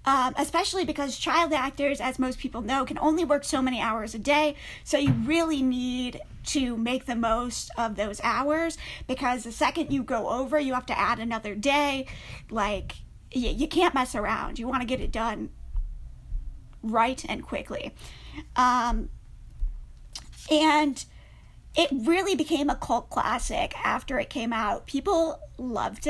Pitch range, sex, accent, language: 230-290 Hz, female, American, English